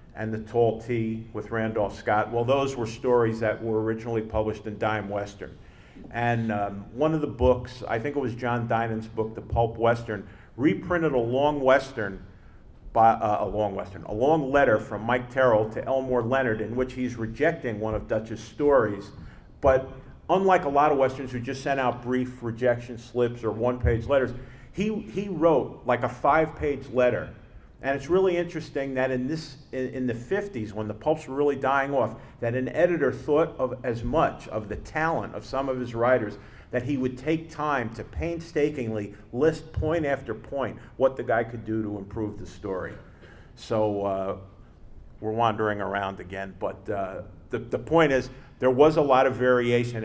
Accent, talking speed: American, 185 wpm